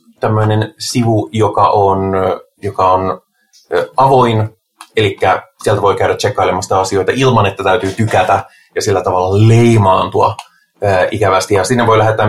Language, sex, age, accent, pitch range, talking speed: Finnish, male, 30-49, native, 95-125 Hz, 135 wpm